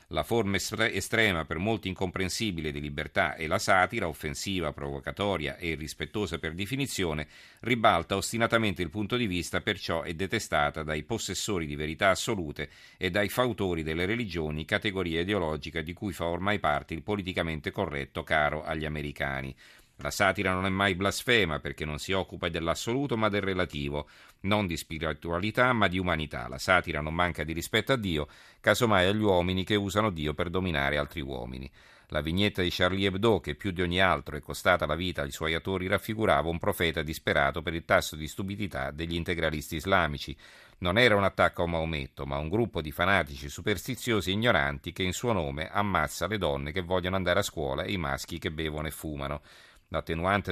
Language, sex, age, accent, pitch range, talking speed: Italian, male, 50-69, native, 80-100 Hz, 180 wpm